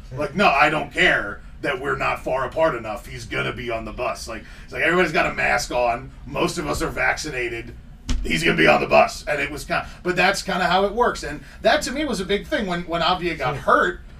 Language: English